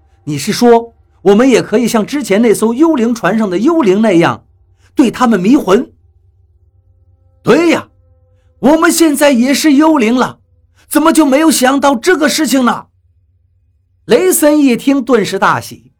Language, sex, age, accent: Chinese, male, 50-69, native